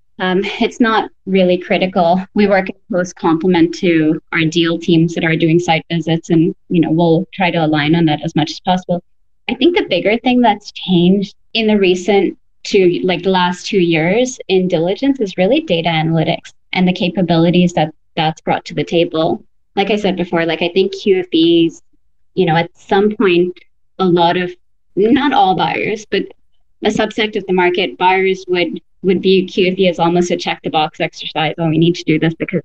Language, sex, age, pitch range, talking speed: English, female, 20-39, 165-195 Hz, 195 wpm